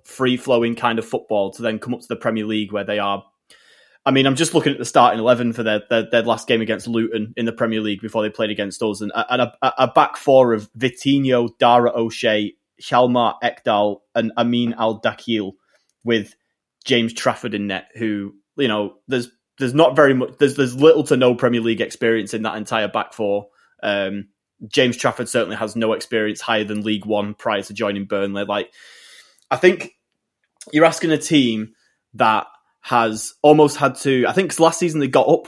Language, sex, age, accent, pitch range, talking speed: English, male, 20-39, British, 110-130 Hz, 200 wpm